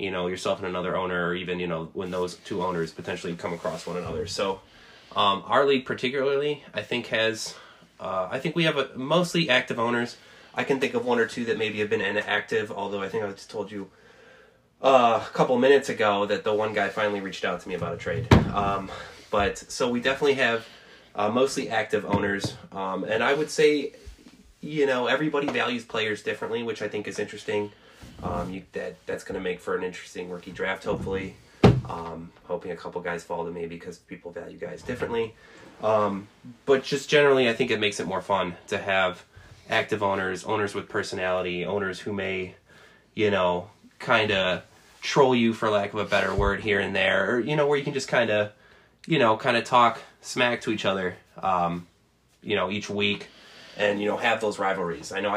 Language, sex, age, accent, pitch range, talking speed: English, male, 20-39, American, 95-125 Hz, 205 wpm